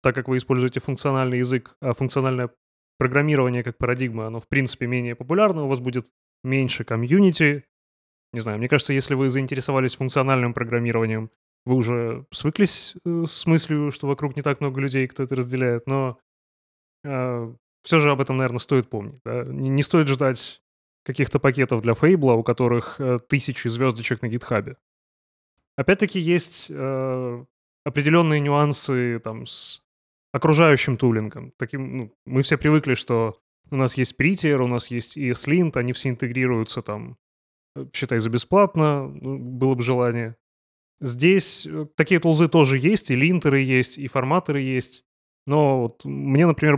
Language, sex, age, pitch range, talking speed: Ukrainian, male, 20-39, 120-140 Hz, 145 wpm